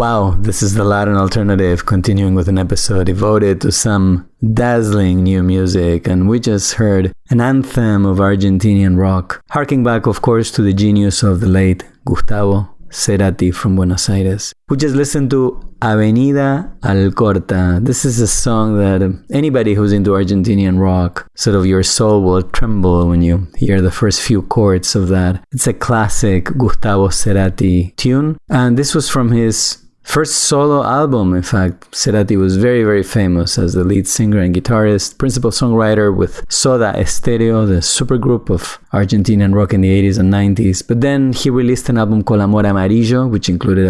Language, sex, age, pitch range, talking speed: English, male, 30-49, 95-115 Hz, 170 wpm